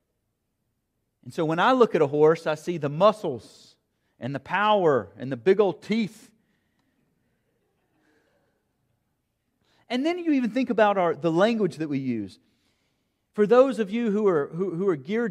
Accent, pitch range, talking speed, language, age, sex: American, 185-245 Hz, 165 wpm, English, 40-59, male